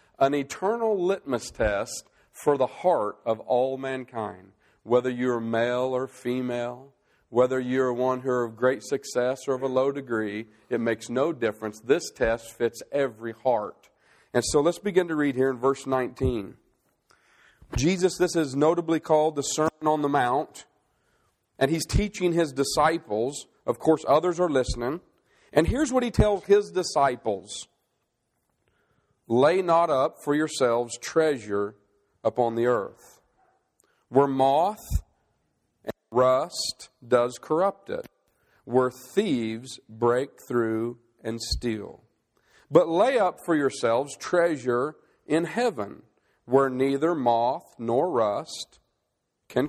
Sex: male